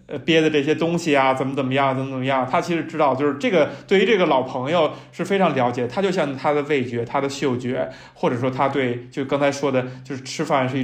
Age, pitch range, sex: 20-39, 125-145 Hz, male